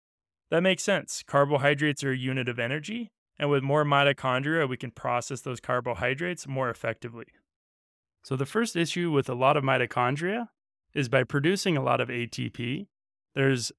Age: 20-39